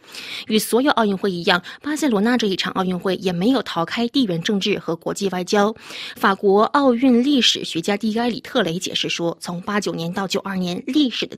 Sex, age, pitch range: female, 20-39, 180-240 Hz